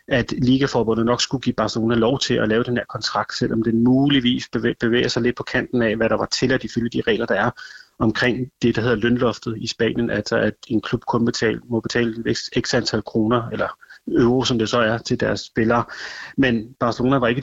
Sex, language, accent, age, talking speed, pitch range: male, Danish, native, 30-49, 220 wpm, 115-130 Hz